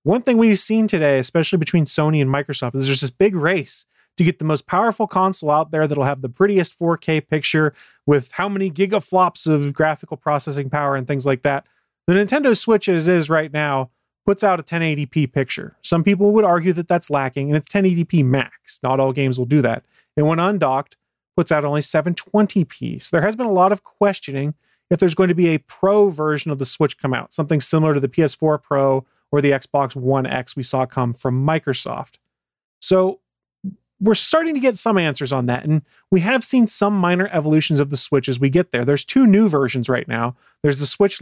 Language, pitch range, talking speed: English, 140-180 Hz, 215 wpm